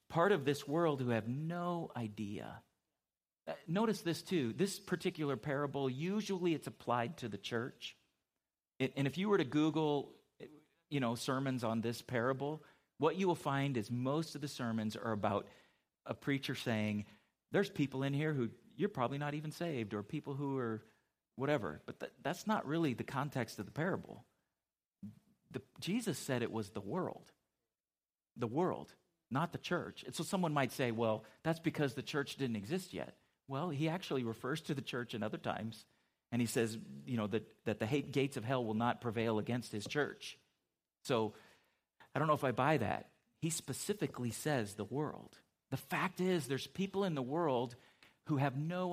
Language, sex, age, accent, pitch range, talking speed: English, male, 40-59, American, 115-160 Hz, 180 wpm